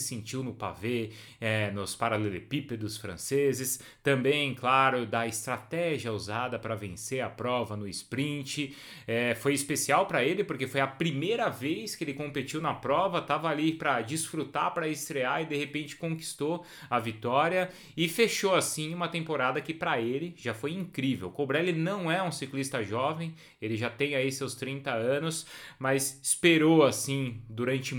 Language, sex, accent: Portuguese, male, Brazilian